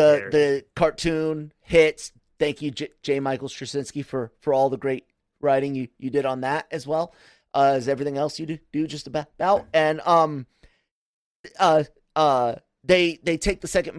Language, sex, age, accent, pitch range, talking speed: English, male, 30-49, American, 135-175 Hz, 180 wpm